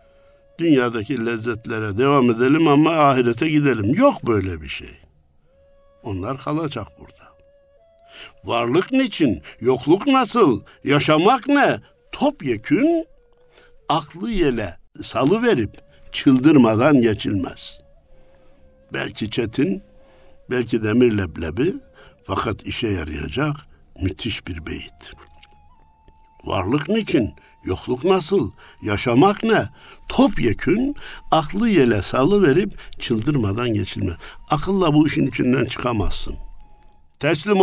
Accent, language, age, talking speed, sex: native, Turkish, 60-79, 90 wpm, male